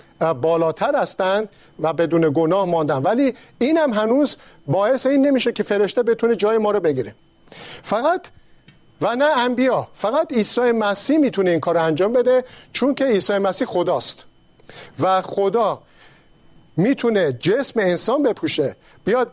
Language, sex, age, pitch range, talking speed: Persian, male, 50-69, 170-230 Hz, 140 wpm